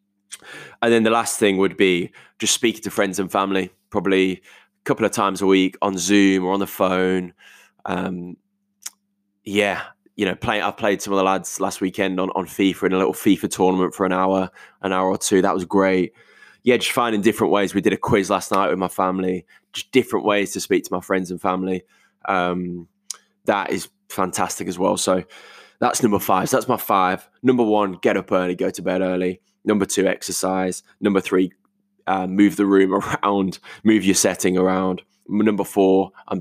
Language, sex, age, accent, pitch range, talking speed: English, male, 10-29, British, 95-100 Hz, 195 wpm